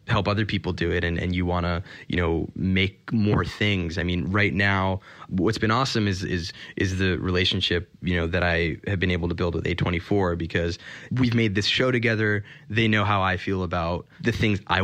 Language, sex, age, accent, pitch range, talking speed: English, male, 20-39, American, 90-100 Hz, 215 wpm